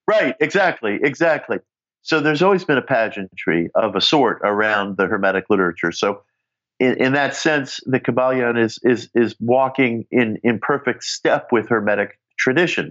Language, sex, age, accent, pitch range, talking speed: English, male, 50-69, American, 100-130 Hz, 160 wpm